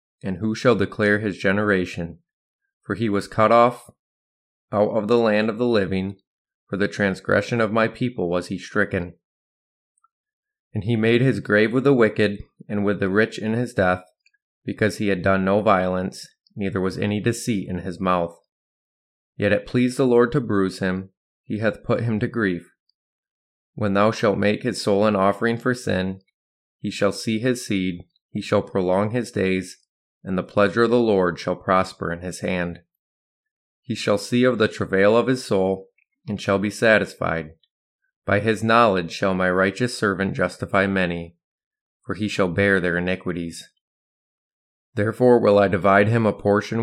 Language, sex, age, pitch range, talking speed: English, male, 20-39, 95-115 Hz, 175 wpm